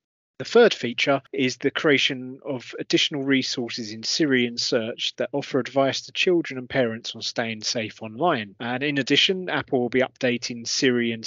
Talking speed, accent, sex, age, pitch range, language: 165 wpm, British, male, 30-49, 115-140 Hz, English